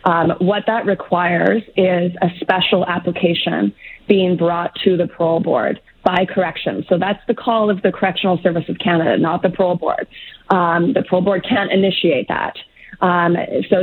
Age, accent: 30-49, American